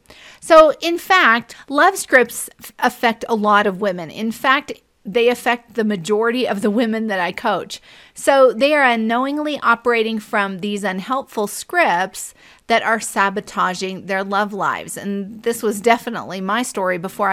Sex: female